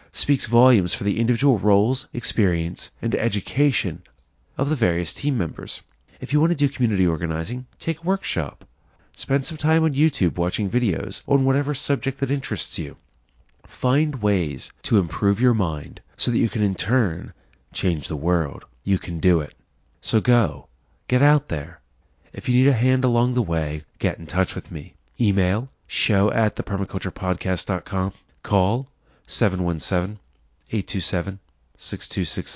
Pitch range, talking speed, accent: 85-120 Hz, 150 wpm, American